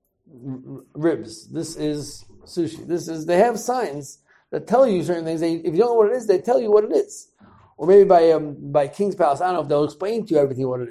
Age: 60-79